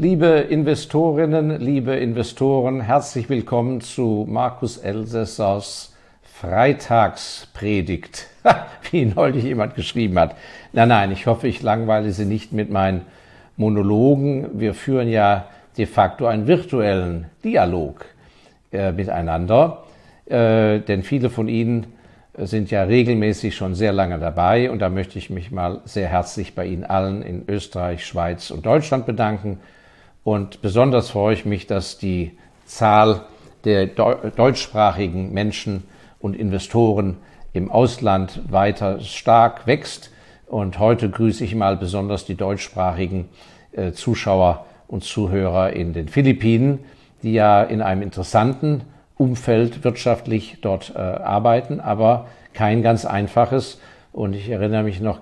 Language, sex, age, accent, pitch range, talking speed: German, male, 50-69, German, 95-120 Hz, 125 wpm